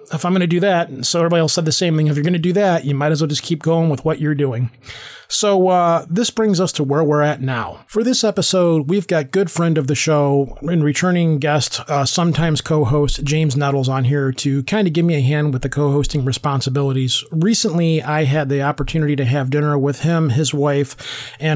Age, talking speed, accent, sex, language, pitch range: 30-49, 235 wpm, American, male, English, 140-170 Hz